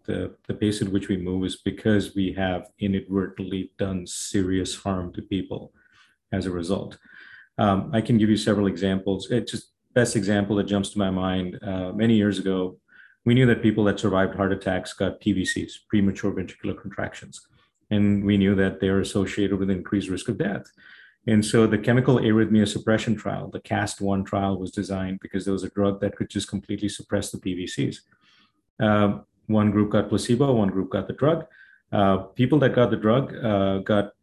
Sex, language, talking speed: male, English, 190 wpm